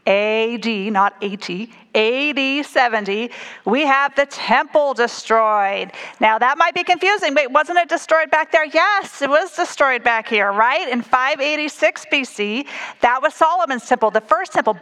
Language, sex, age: English, female, 40-59